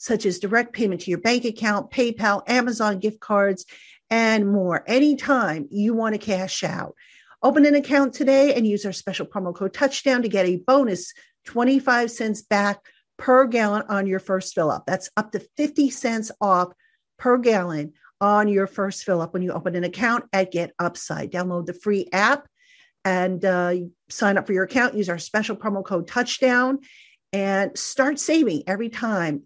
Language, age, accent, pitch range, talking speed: English, 50-69, American, 190-245 Hz, 175 wpm